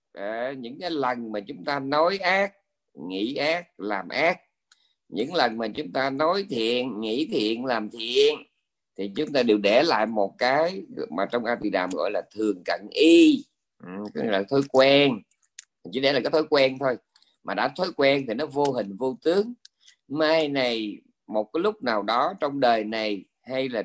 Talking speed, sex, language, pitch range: 190 wpm, male, Vietnamese, 110-165 Hz